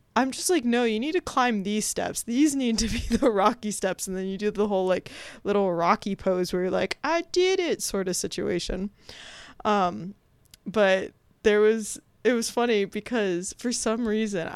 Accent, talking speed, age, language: American, 195 wpm, 20-39, English